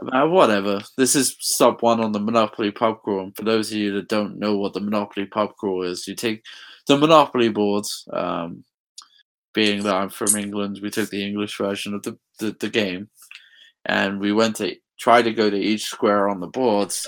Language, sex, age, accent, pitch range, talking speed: English, male, 20-39, British, 100-115 Hz, 205 wpm